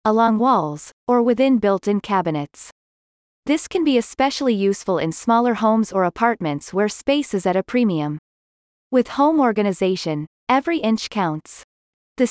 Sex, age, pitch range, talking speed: female, 30-49, 180-245 Hz, 140 wpm